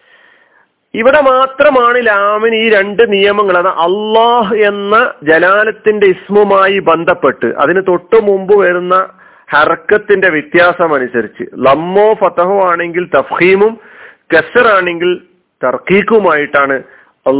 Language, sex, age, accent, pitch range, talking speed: Malayalam, male, 40-59, native, 130-195 Hz, 90 wpm